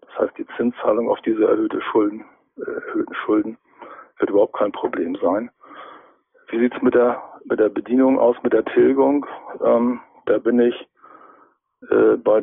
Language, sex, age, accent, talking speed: German, male, 50-69, German, 160 wpm